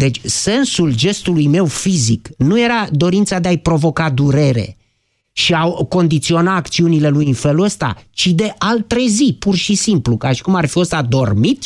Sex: male